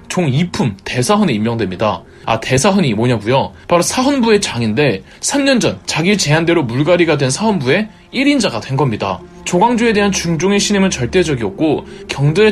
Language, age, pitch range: Korean, 20-39, 135-205 Hz